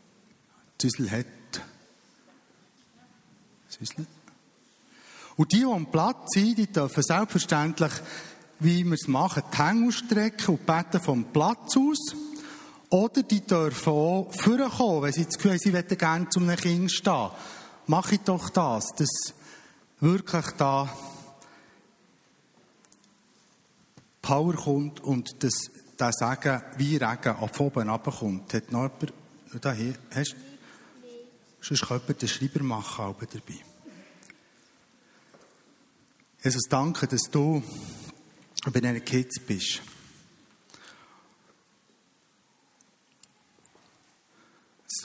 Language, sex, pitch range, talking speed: German, male, 115-175 Hz, 100 wpm